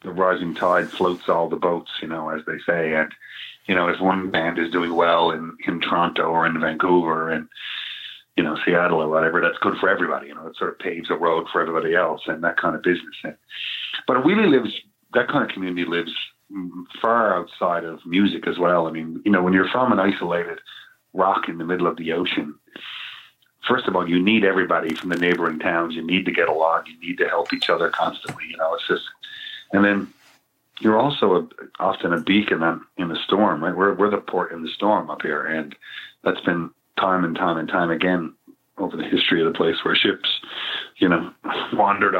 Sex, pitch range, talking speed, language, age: male, 85-95 Hz, 220 wpm, English, 40-59